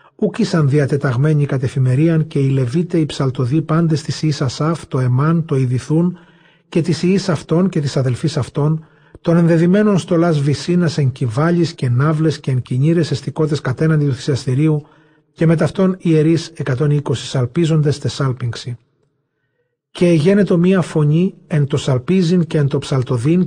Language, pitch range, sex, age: Greek, 140-165 Hz, male, 40-59